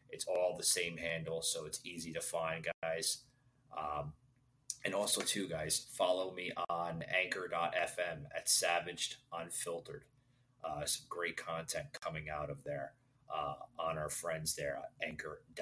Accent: American